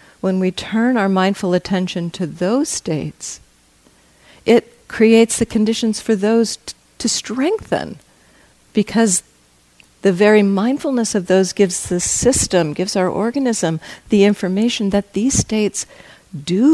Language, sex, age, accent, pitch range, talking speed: English, female, 50-69, American, 155-210 Hz, 125 wpm